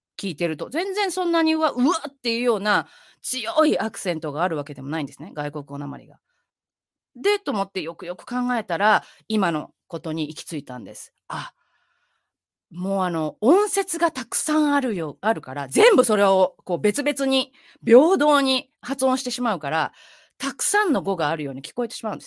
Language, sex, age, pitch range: Japanese, female, 30-49, 175-290 Hz